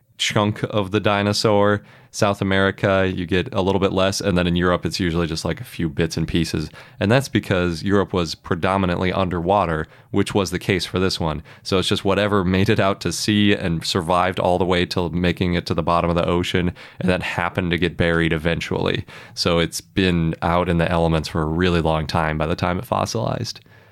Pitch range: 85-105 Hz